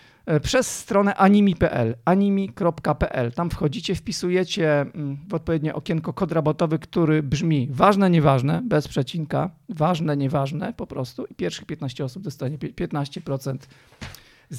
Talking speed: 115 wpm